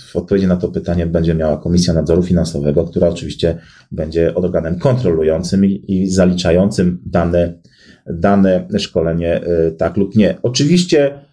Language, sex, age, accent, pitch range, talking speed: Polish, male, 30-49, native, 90-125 Hz, 125 wpm